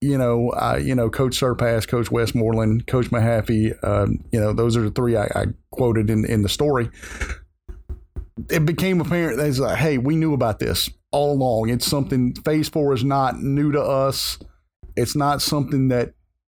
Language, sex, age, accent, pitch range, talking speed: English, male, 40-59, American, 110-135 Hz, 180 wpm